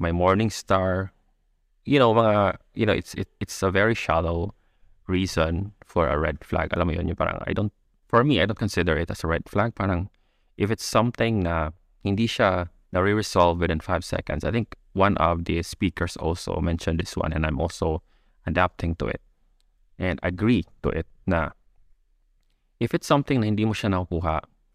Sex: male